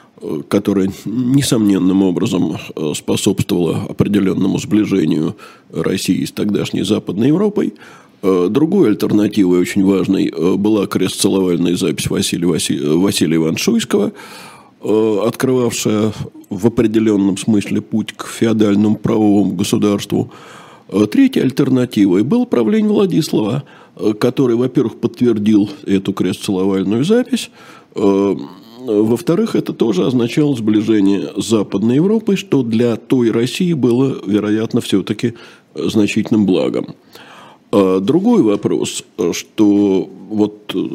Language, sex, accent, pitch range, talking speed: Russian, male, native, 100-130 Hz, 90 wpm